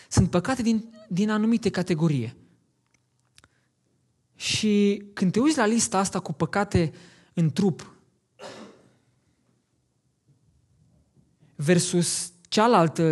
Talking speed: 85 wpm